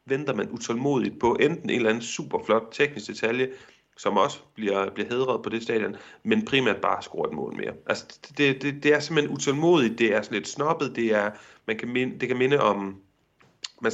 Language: Danish